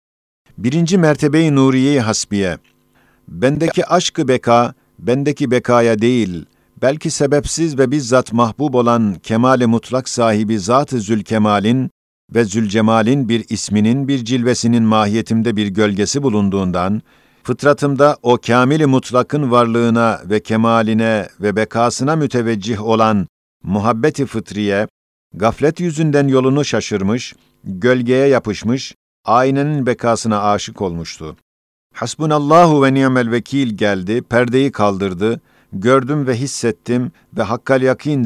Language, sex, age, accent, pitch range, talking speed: Turkish, male, 50-69, native, 110-135 Hz, 105 wpm